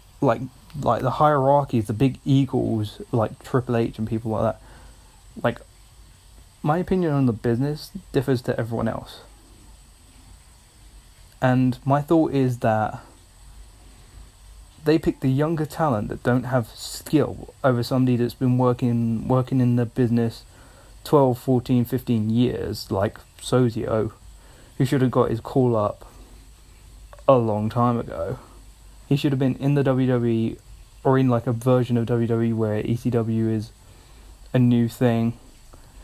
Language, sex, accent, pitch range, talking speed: English, male, British, 110-130 Hz, 140 wpm